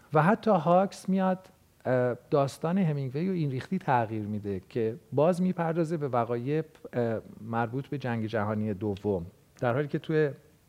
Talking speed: 135 wpm